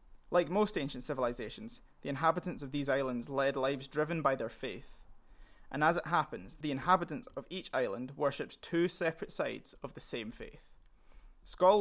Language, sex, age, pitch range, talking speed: English, male, 20-39, 130-165 Hz, 170 wpm